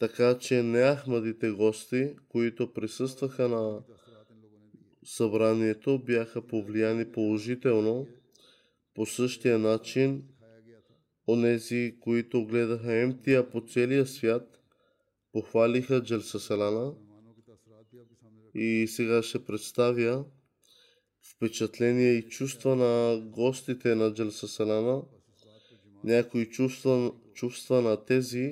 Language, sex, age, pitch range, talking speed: Bulgarian, male, 20-39, 110-125 Hz, 80 wpm